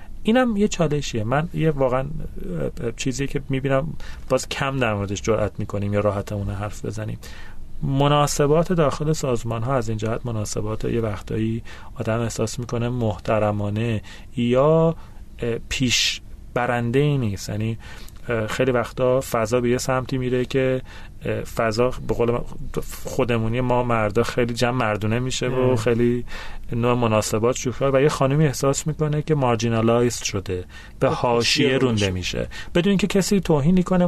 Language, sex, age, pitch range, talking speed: Persian, male, 30-49, 110-145 Hz, 135 wpm